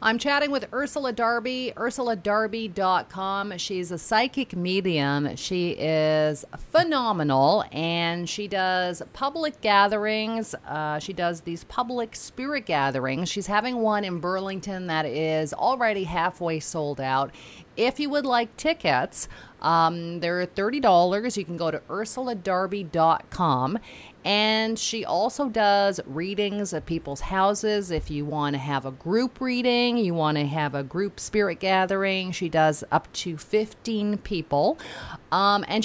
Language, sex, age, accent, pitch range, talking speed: English, female, 40-59, American, 160-215 Hz, 135 wpm